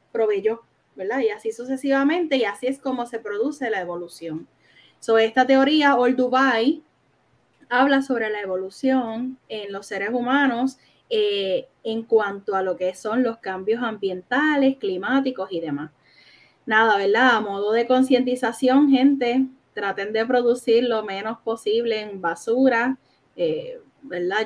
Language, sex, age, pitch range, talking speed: Spanish, female, 10-29, 215-270 Hz, 135 wpm